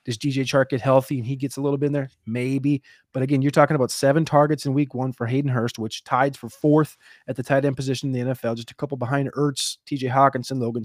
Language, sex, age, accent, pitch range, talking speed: English, male, 30-49, American, 120-145 Hz, 260 wpm